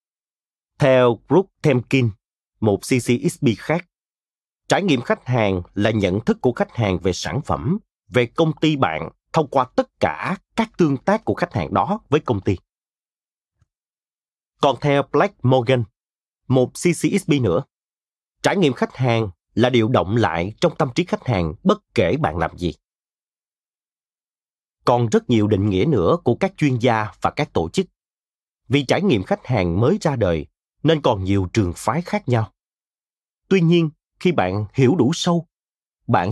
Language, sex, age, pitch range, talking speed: Vietnamese, male, 30-49, 105-165 Hz, 165 wpm